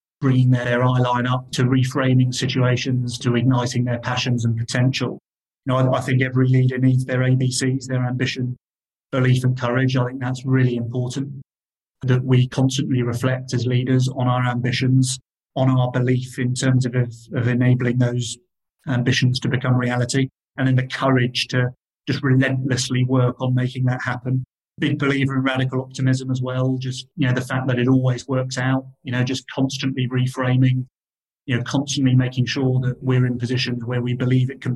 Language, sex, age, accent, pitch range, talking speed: English, male, 30-49, British, 125-130 Hz, 180 wpm